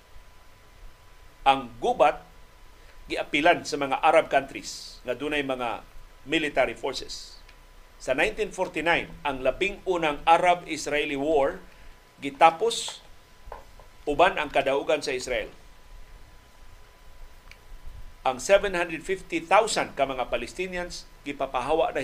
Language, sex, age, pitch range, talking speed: Filipino, male, 50-69, 130-180 Hz, 85 wpm